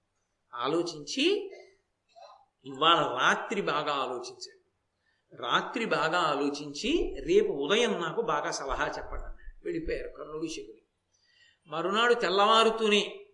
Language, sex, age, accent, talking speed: Telugu, male, 50-69, native, 90 wpm